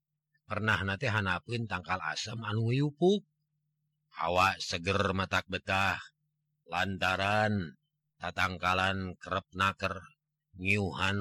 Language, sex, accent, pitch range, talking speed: Indonesian, male, native, 100-150 Hz, 85 wpm